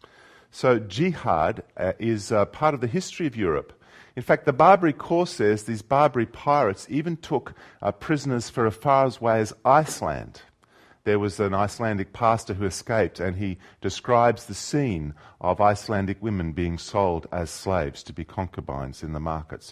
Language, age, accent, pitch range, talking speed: English, 40-59, Australian, 85-115 Hz, 175 wpm